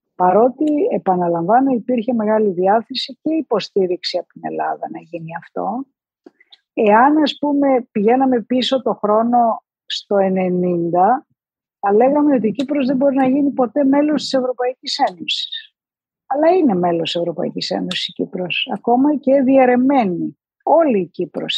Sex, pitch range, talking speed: female, 185-270 Hz, 135 wpm